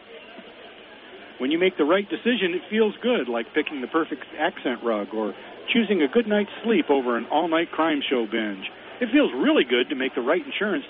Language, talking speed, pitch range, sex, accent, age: English, 200 wpm, 150-215 Hz, male, American, 50-69